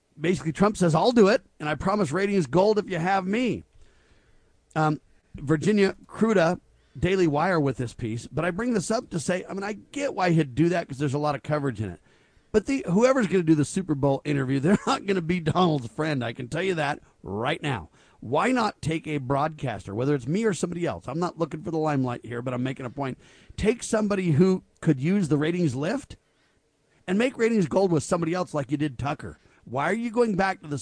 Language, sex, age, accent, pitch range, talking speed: English, male, 40-59, American, 140-190 Hz, 230 wpm